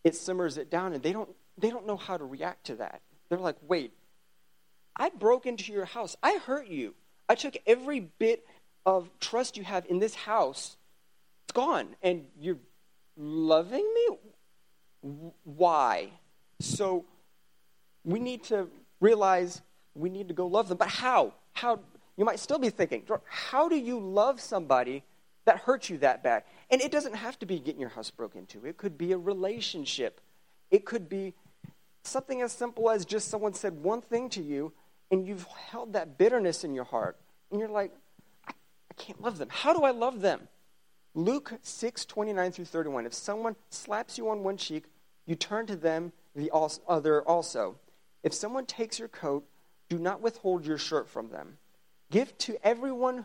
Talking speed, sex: 180 wpm, male